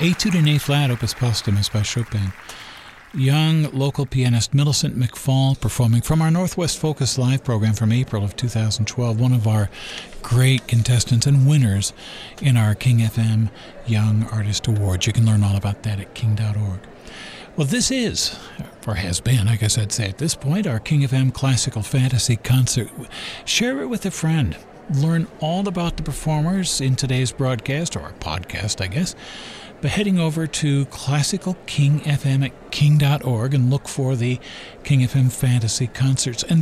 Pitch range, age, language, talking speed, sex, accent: 110-150 Hz, 50-69, English, 160 wpm, male, American